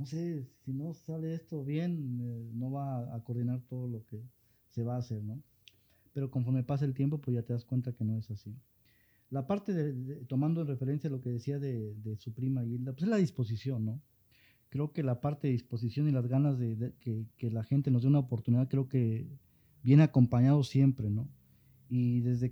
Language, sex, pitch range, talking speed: Spanish, male, 120-145 Hz, 215 wpm